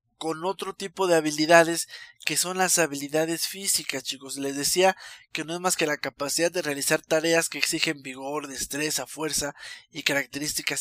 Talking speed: 165 wpm